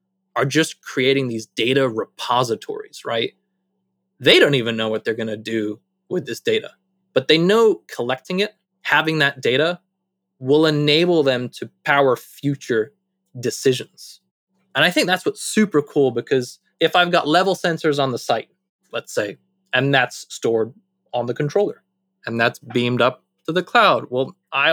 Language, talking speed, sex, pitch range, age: English, 165 wpm, male, 130-185 Hz, 20-39